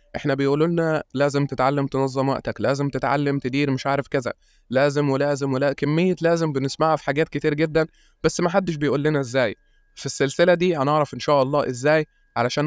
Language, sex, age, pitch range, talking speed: Arabic, male, 20-39, 130-155 Hz, 175 wpm